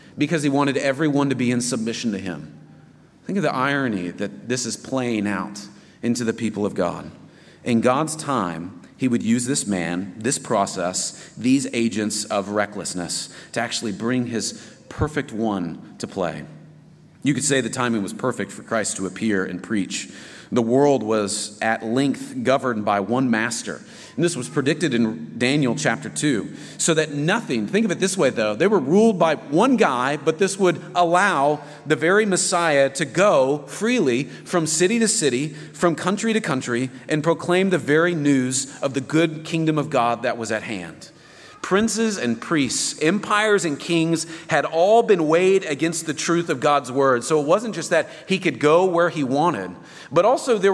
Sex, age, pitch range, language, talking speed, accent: male, 30-49, 130-180 Hz, English, 180 wpm, American